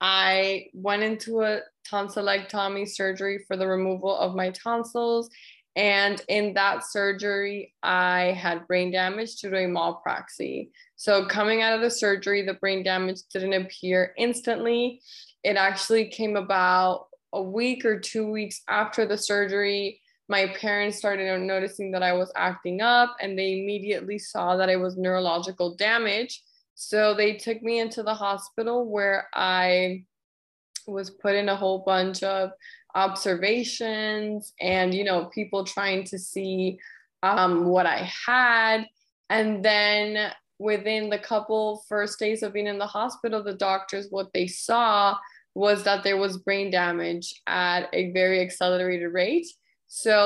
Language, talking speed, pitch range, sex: English, 145 wpm, 190-215 Hz, female